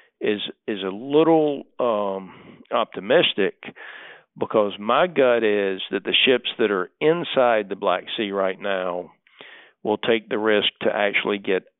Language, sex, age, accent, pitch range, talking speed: English, male, 50-69, American, 95-115 Hz, 140 wpm